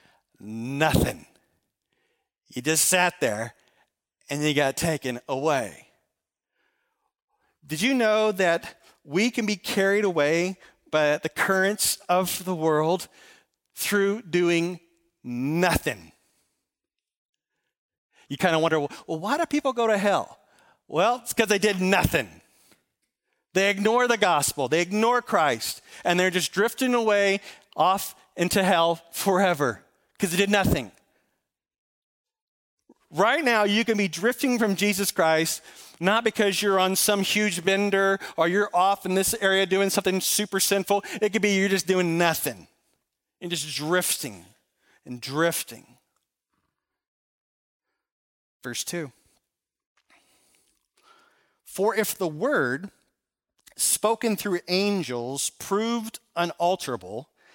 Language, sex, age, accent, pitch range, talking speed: English, male, 40-59, American, 165-210 Hz, 120 wpm